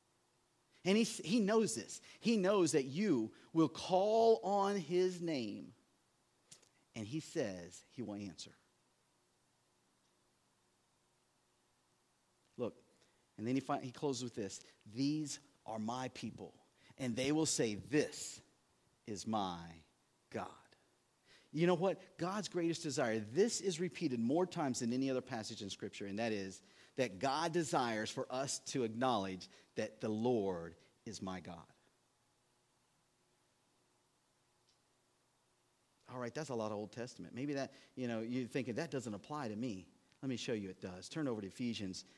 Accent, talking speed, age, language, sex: American, 145 wpm, 40-59, English, male